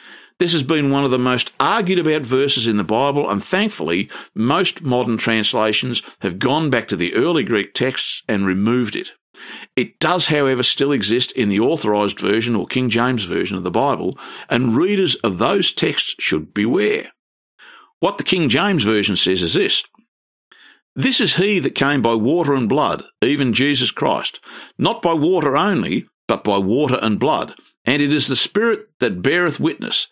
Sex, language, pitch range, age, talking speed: male, English, 110-175 Hz, 50-69, 175 wpm